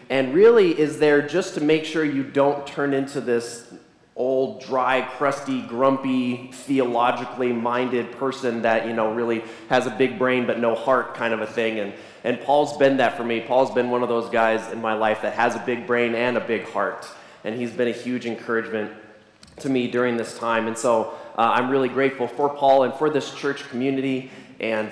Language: English